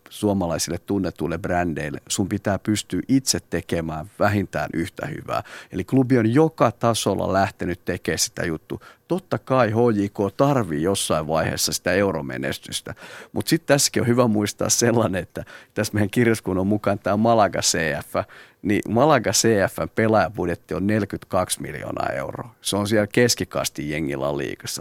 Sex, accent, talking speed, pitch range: male, native, 140 wpm, 95-120 Hz